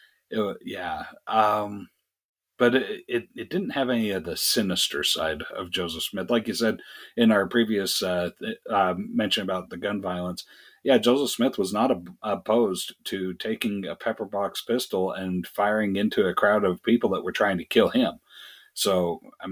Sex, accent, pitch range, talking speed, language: male, American, 90-135 Hz, 180 wpm, English